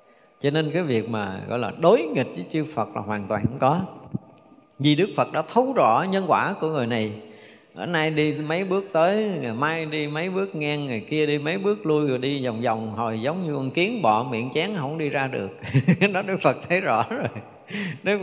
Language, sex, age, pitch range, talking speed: Vietnamese, male, 20-39, 115-160 Hz, 225 wpm